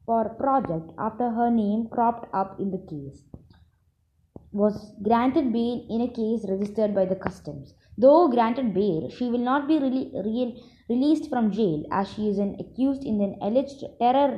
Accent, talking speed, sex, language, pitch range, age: native, 175 wpm, female, Malayalam, 185-245 Hz, 20-39